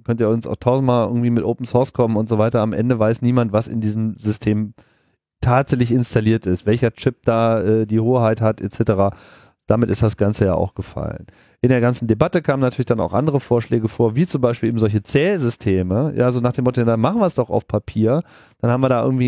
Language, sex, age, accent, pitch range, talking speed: German, male, 30-49, German, 110-135 Hz, 225 wpm